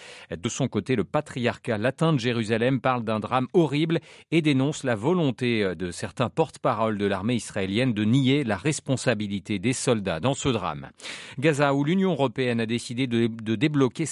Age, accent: 40-59, French